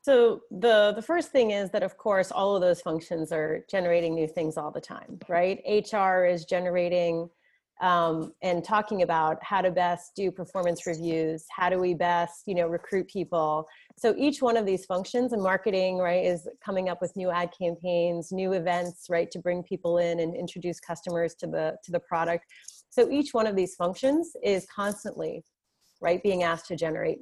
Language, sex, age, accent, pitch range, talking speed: English, female, 30-49, American, 175-205 Hz, 190 wpm